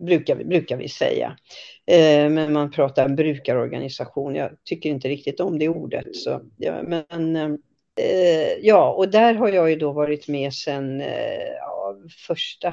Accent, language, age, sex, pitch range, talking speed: native, Swedish, 50-69, female, 145-180 Hz, 155 wpm